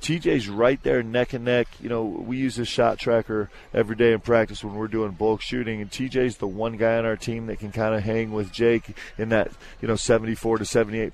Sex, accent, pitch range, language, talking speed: male, American, 110-130 Hz, English, 235 wpm